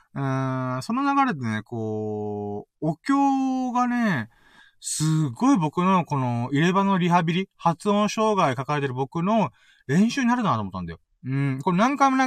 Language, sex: Japanese, male